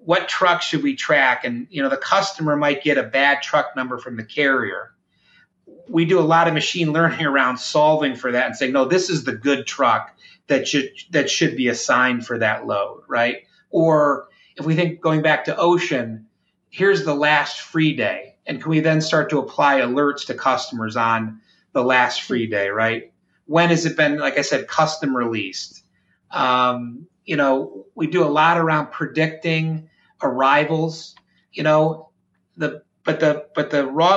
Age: 30-49